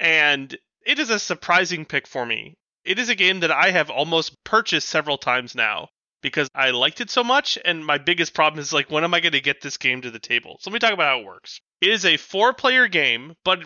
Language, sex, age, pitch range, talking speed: English, male, 30-49, 140-180 Hz, 250 wpm